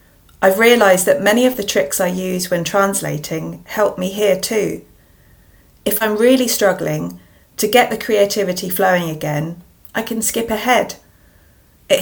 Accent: British